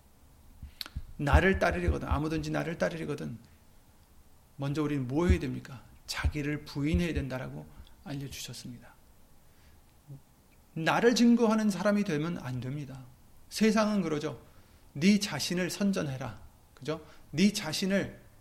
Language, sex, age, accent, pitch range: Korean, male, 30-49, native, 120-190 Hz